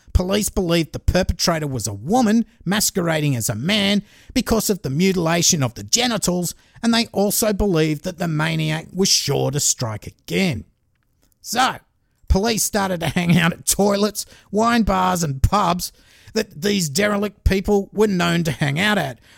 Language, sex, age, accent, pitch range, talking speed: English, male, 50-69, Australian, 155-205 Hz, 160 wpm